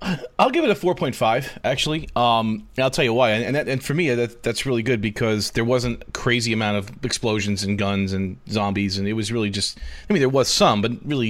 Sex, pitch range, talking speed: male, 110-130 Hz, 245 wpm